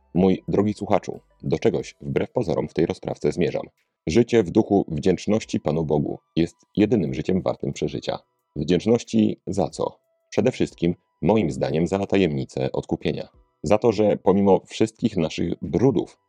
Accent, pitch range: native, 80-105 Hz